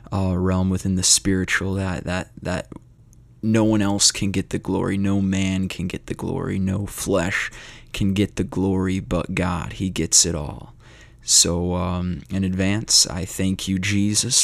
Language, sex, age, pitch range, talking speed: English, male, 20-39, 95-110 Hz, 170 wpm